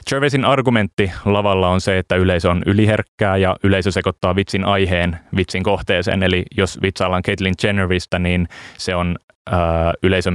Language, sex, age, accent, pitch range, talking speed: Finnish, male, 20-39, native, 90-100 Hz, 150 wpm